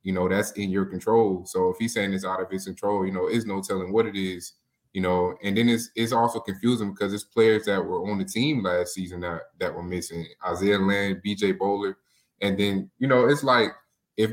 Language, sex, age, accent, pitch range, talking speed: English, male, 20-39, American, 95-110 Hz, 235 wpm